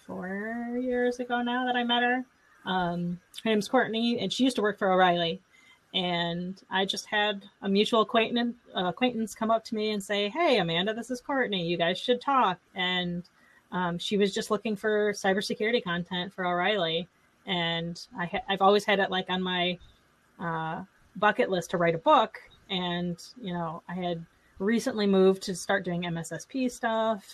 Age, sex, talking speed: 30-49, female, 180 wpm